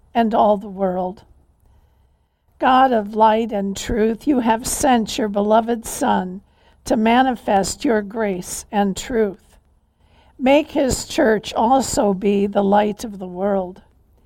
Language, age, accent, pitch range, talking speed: English, 60-79, American, 195-235 Hz, 130 wpm